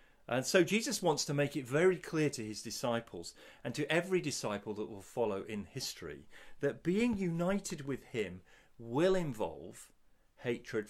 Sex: male